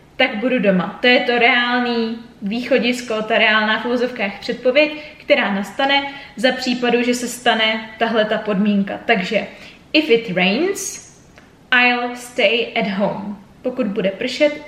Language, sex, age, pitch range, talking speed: Czech, female, 20-39, 215-265 Hz, 135 wpm